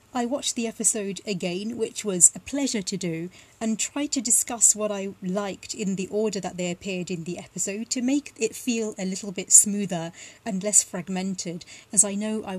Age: 30-49